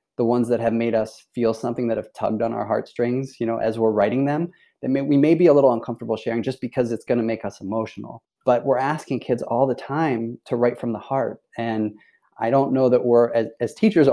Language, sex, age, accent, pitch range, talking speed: English, male, 20-39, American, 110-130 Hz, 240 wpm